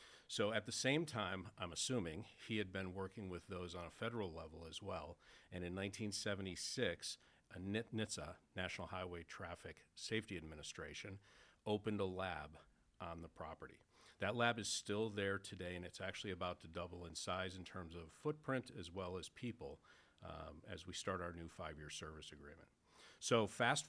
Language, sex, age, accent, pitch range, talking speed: English, male, 40-59, American, 90-110 Hz, 170 wpm